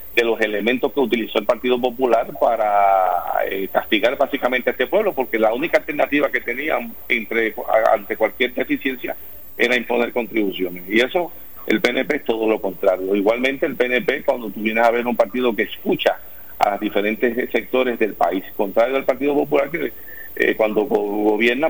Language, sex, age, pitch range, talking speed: Spanish, male, 50-69, 105-125 Hz, 170 wpm